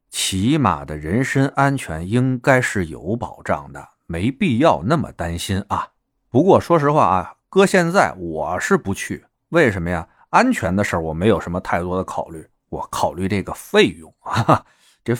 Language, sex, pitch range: Chinese, male, 90-130 Hz